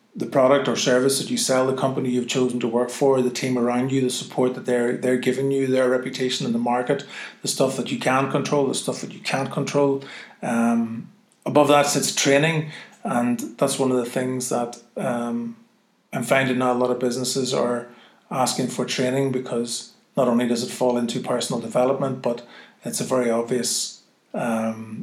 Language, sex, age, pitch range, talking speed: English, male, 30-49, 125-145 Hz, 190 wpm